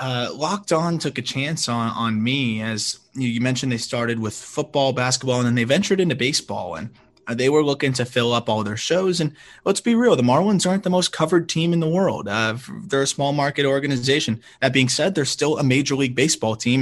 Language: English